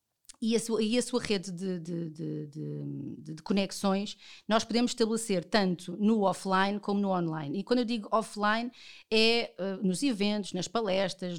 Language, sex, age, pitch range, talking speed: Portuguese, female, 30-49, 180-225 Hz, 175 wpm